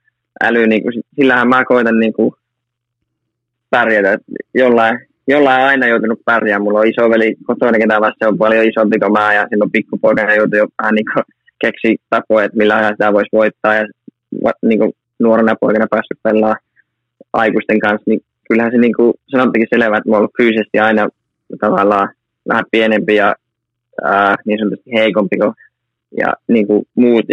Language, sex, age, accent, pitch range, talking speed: Finnish, male, 20-39, native, 110-125 Hz, 160 wpm